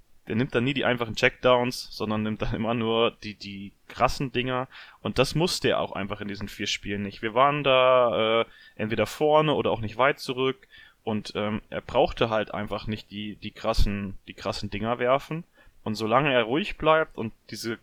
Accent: German